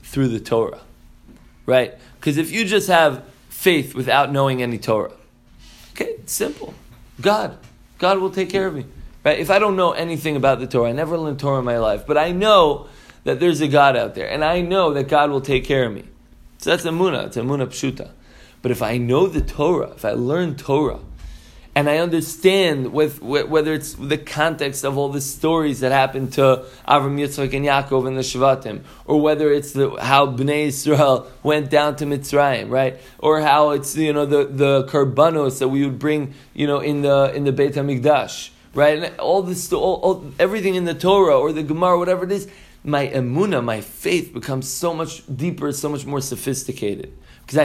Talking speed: 200 wpm